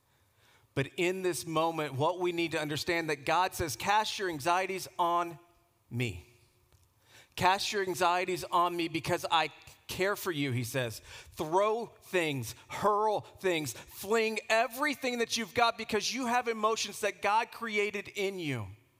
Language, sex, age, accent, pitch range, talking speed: English, male, 40-59, American, 110-180 Hz, 150 wpm